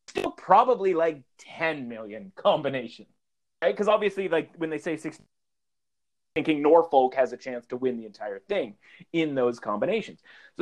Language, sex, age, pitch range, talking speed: English, male, 30-49, 125-190 Hz, 160 wpm